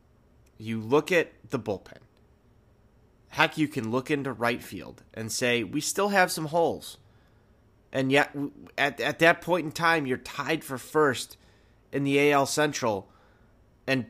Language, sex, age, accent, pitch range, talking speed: English, male, 30-49, American, 110-150 Hz, 155 wpm